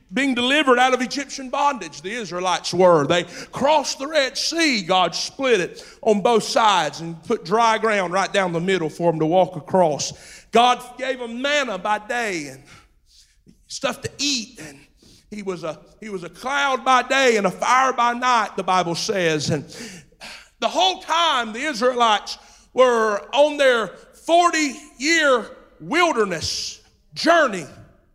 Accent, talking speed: American, 160 wpm